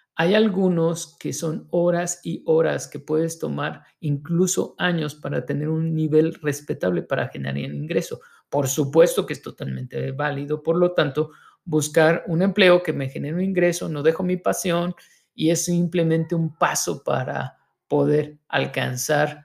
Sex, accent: male, Mexican